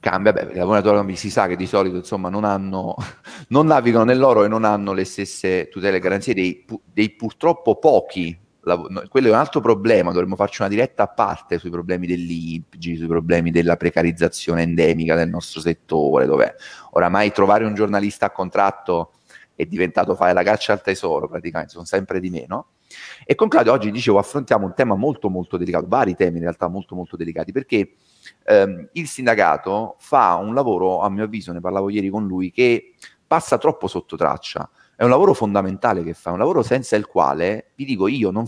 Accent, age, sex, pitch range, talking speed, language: native, 30-49, male, 90-110 Hz, 185 wpm, Italian